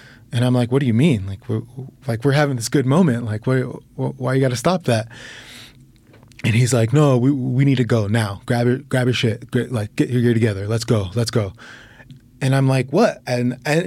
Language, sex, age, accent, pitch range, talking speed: English, male, 20-39, American, 115-135 Hz, 225 wpm